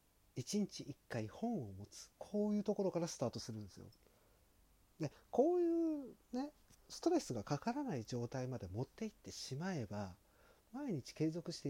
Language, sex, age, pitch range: Japanese, male, 40-59, 105-170 Hz